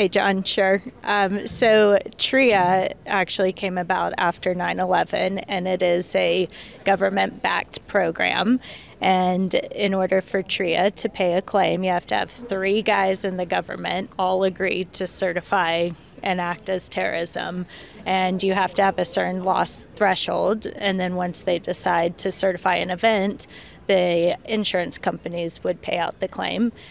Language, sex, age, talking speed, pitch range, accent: English, female, 20-39, 155 wpm, 175-195 Hz, American